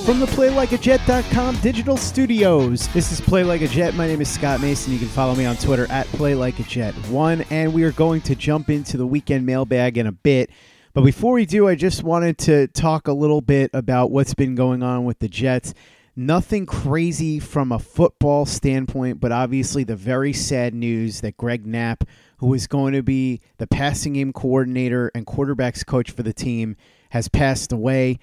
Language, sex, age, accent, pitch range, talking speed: English, male, 30-49, American, 120-145 Hz, 190 wpm